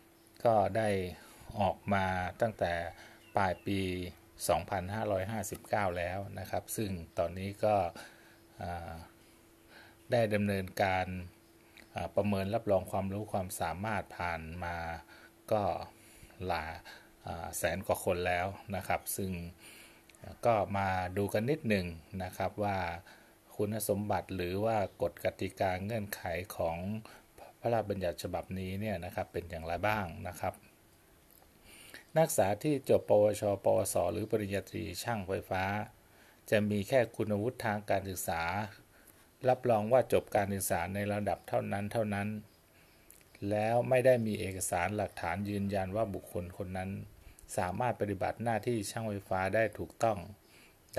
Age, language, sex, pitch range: 20-39, Thai, male, 90-110 Hz